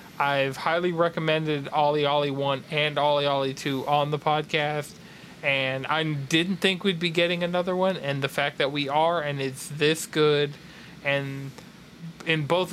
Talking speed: 165 wpm